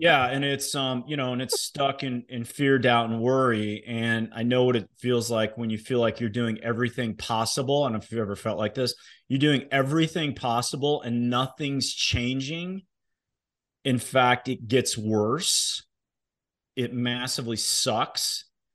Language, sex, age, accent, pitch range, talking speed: English, male, 30-49, American, 110-125 Hz, 175 wpm